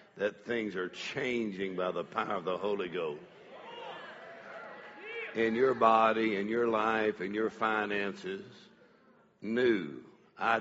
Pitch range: 100-115 Hz